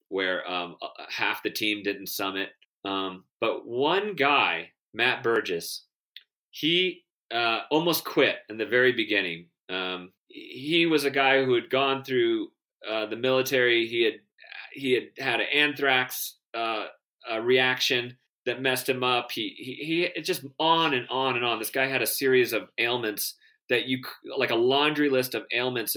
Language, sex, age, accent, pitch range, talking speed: English, male, 30-49, American, 105-155 Hz, 165 wpm